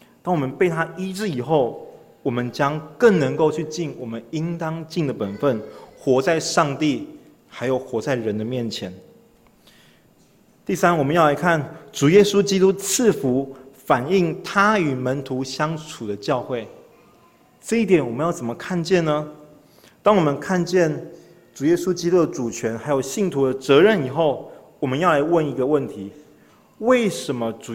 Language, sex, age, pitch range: Chinese, male, 30-49, 135-175 Hz